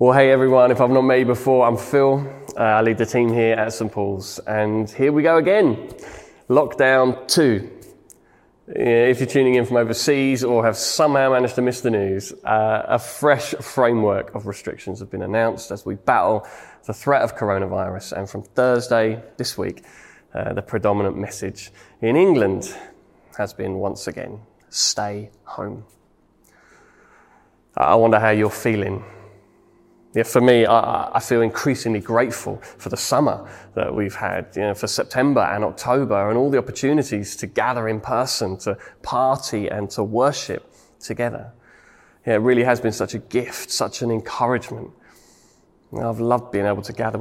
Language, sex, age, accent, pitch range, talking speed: English, male, 20-39, British, 105-125 Hz, 165 wpm